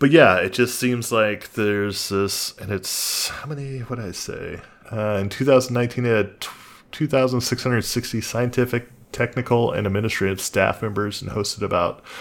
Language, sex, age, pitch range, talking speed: English, male, 20-39, 95-120 Hz, 150 wpm